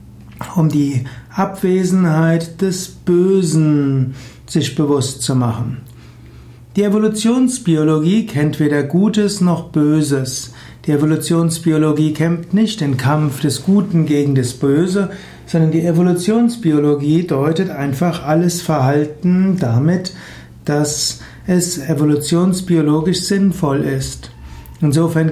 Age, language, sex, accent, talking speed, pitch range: 60-79, German, male, German, 95 wpm, 140-180 Hz